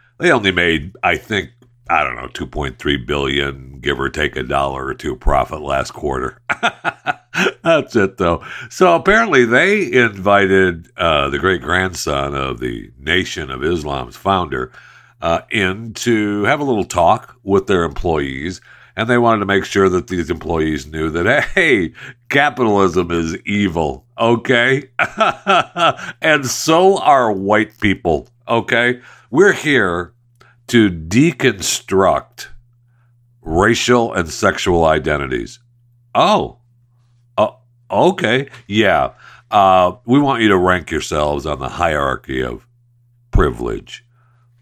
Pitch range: 85-120 Hz